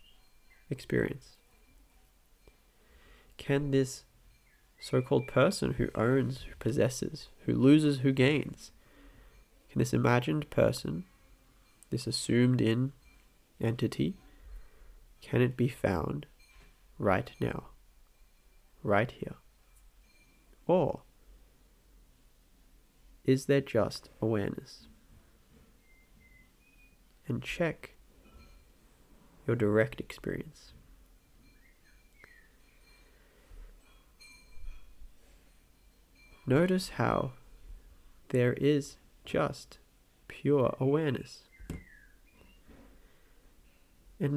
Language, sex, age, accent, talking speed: English, male, 20-39, Australian, 60 wpm